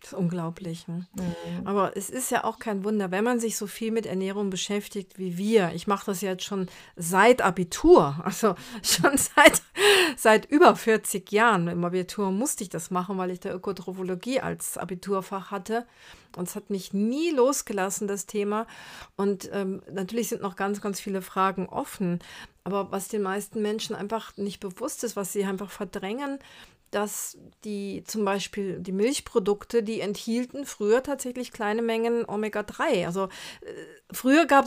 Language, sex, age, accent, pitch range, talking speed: German, female, 40-59, German, 195-235 Hz, 165 wpm